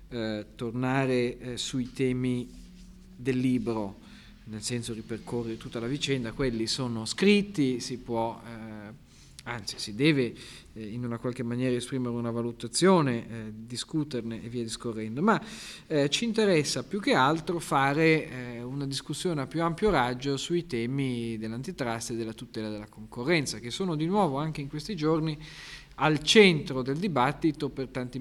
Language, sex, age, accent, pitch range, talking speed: Italian, male, 40-59, native, 120-150 Hz, 155 wpm